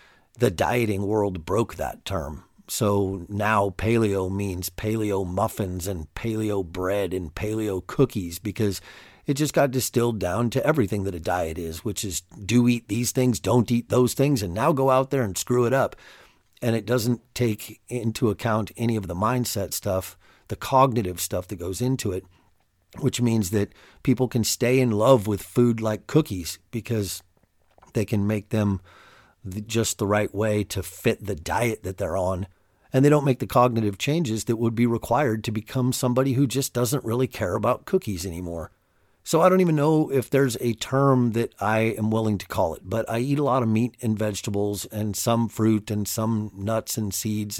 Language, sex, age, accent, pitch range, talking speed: English, male, 50-69, American, 100-120 Hz, 190 wpm